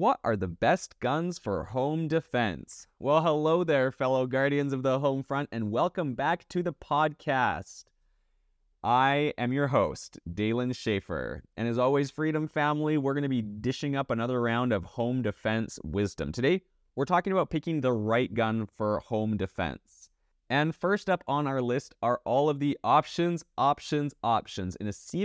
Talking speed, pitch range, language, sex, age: 175 wpm, 105-145 Hz, English, male, 30-49